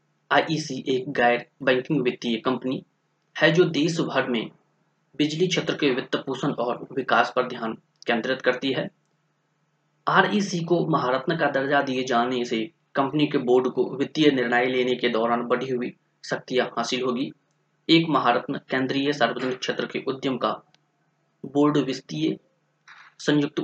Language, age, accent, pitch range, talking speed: Hindi, 20-39, native, 125-155 Hz, 140 wpm